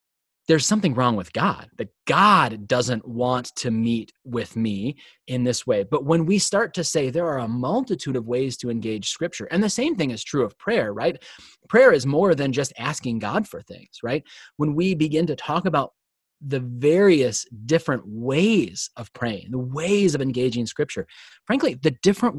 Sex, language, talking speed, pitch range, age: male, English, 190 wpm, 120-165 Hz, 30-49